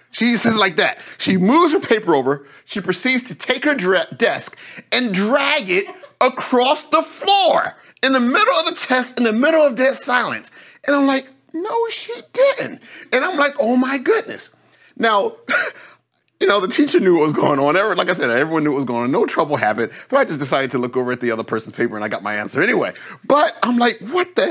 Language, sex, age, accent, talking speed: English, male, 40-59, American, 225 wpm